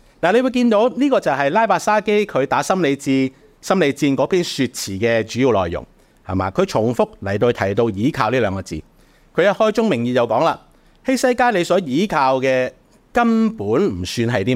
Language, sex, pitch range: Chinese, male, 105-150 Hz